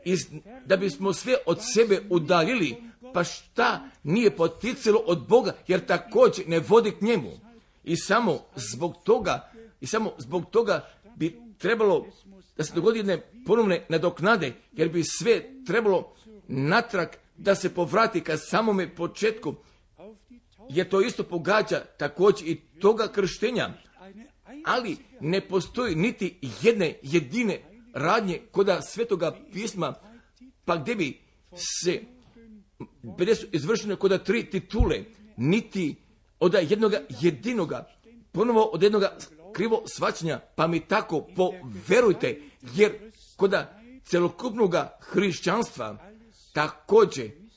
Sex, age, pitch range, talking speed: male, 50-69, 175-225 Hz, 115 wpm